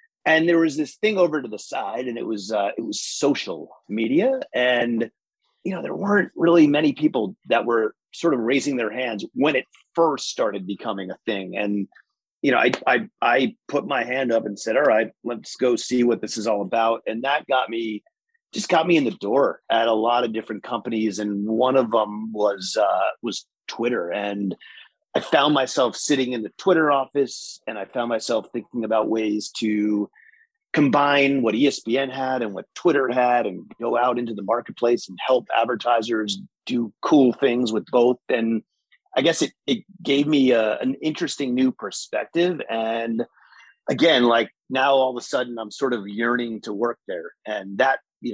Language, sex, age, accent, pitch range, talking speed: English, male, 30-49, American, 110-140 Hz, 190 wpm